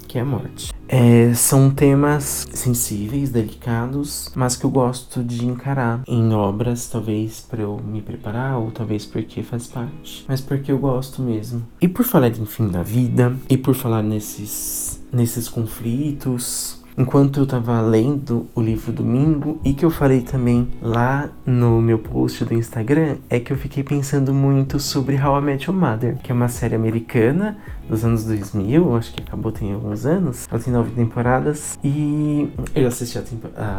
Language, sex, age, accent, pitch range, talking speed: Portuguese, male, 20-39, Brazilian, 115-145 Hz, 175 wpm